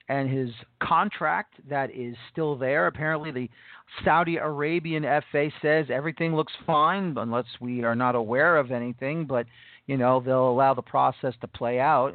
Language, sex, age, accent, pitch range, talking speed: English, male, 40-59, American, 130-170 Hz, 170 wpm